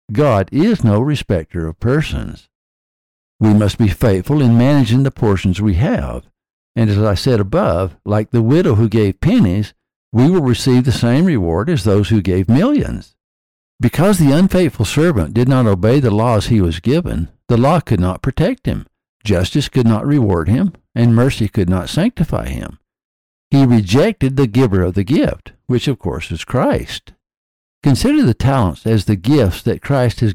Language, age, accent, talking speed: English, 60-79, American, 175 wpm